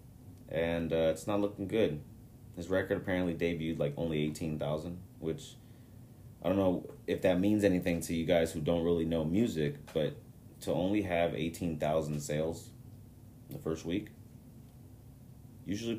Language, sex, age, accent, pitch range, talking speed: English, male, 30-49, American, 85-120 Hz, 145 wpm